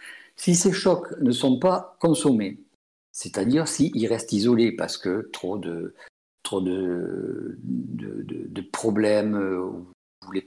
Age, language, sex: 50-69, French, male